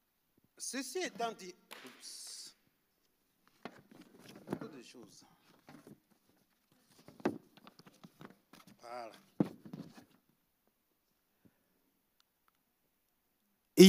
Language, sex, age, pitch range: French, male, 60-79, 175-285 Hz